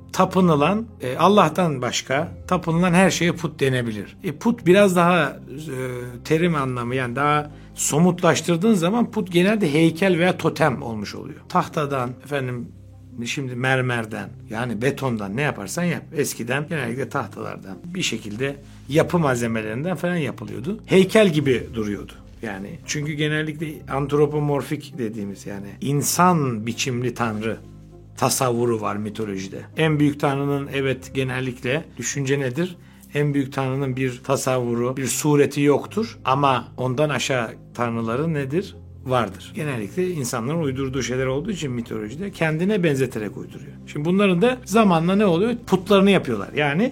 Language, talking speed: Turkish, 125 wpm